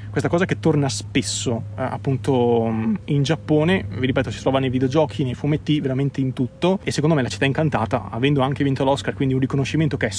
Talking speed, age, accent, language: 205 wpm, 20-39, native, Italian